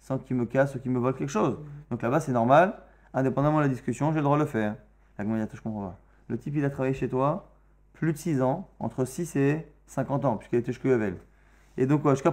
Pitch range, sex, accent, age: 120-155 Hz, male, French, 20-39